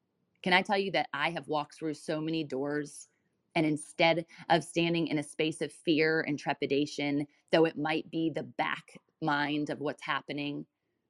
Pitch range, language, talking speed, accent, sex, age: 150-180 Hz, English, 180 wpm, American, female, 20-39